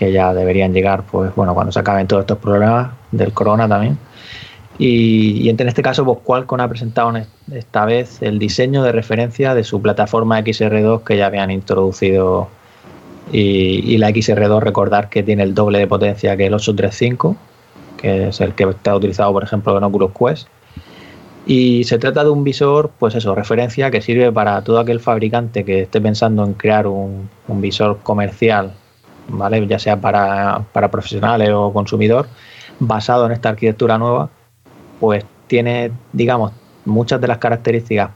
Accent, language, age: Spanish, Spanish, 20-39